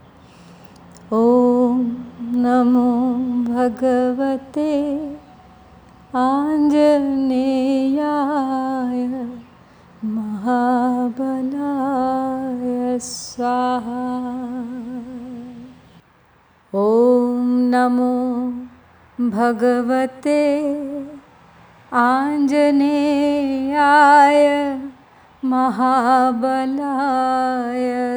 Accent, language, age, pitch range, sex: native, Hindi, 30-49, 245-280 Hz, female